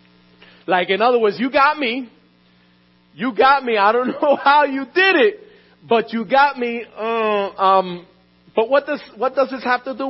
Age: 40-59